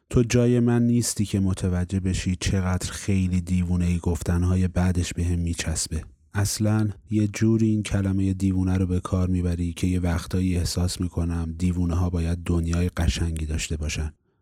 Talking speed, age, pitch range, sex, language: 160 wpm, 30-49, 85-100 Hz, male, Persian